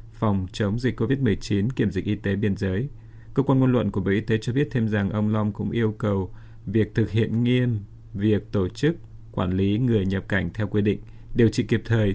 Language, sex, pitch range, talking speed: Vietnamese, male, 105-115 Hz, 225 wpm